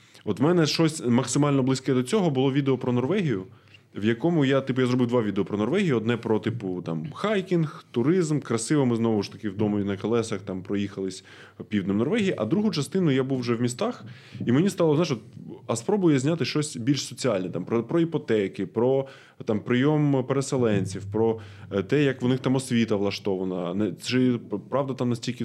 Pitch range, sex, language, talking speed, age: 105-135 Hz, male, Ukrainian, 190 wpm, 20-39